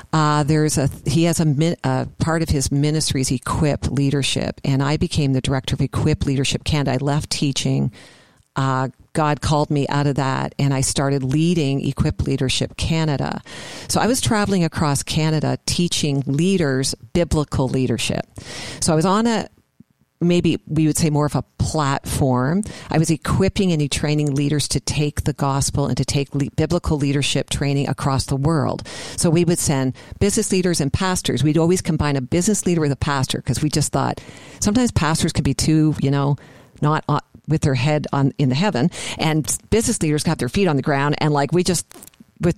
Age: 50-69